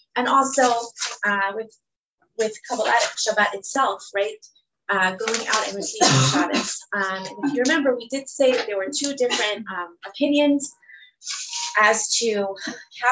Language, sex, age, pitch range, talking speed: English, female, 20-39, 200-265 Hz, 145 wpm